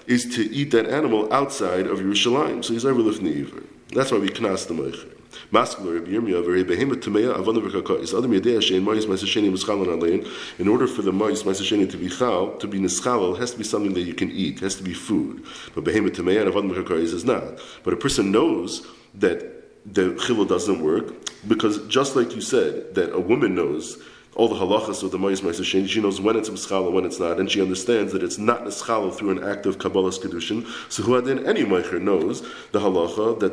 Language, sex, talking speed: English, male, 185 wpm